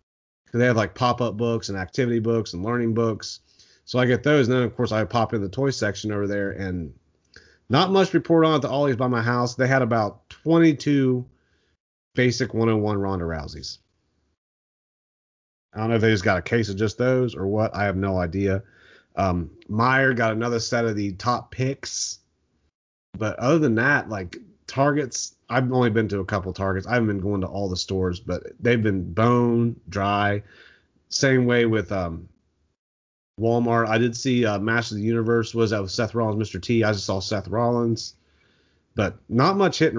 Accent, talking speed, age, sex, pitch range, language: American, 195 wpm, 30-49, male, 95-125 Hz, English